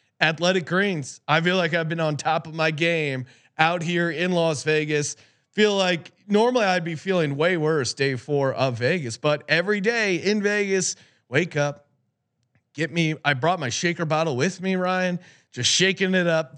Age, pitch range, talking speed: 30-49, 135-185 Hz, 180 wpm